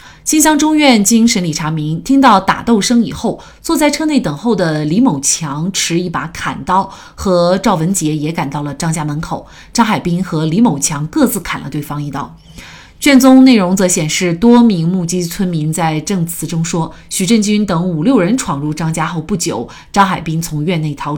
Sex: female